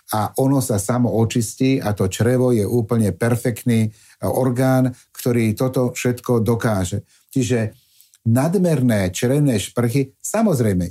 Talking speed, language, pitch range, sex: 115 wpm, Slovak, 110-135 Hz, male